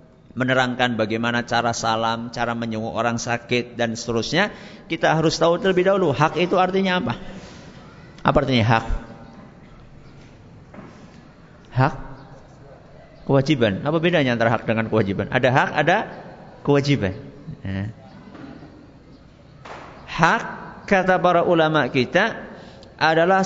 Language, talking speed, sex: English, 105 wpm, male